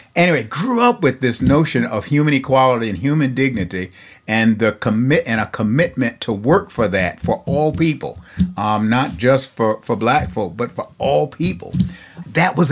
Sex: male